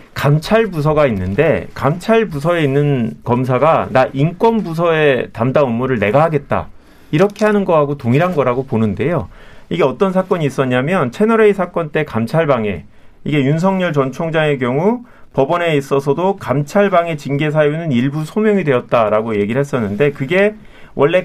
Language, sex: Korean, male